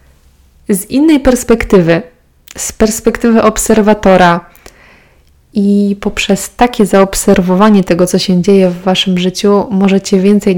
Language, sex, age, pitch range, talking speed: Polish, female, 20-39, 185-205 Hz, 110 wpm